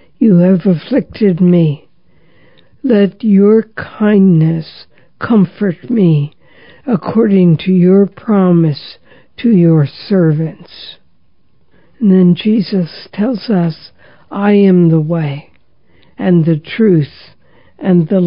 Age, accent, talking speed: 60-79, American, 100 wpm